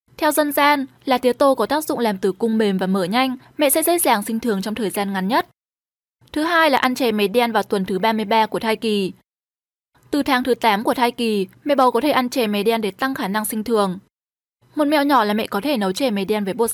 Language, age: Vietnamese, 10-29